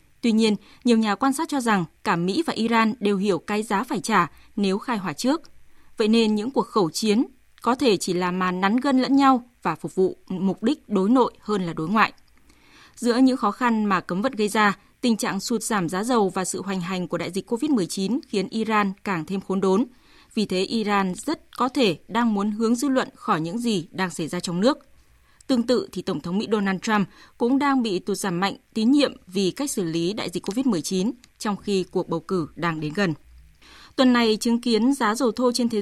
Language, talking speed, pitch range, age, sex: Vietnamese, 230 wpm, 190-245 Hz, 20-39, female